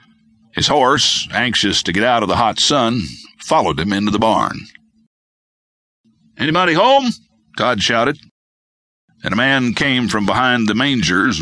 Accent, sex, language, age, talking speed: American, male, English, 60-79, 140 wpm